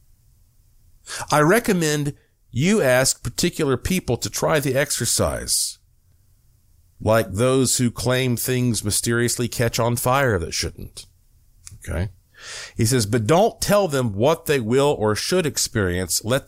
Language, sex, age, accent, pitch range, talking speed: English, male, 50-69, American, 95-125 Hz, 130 wpm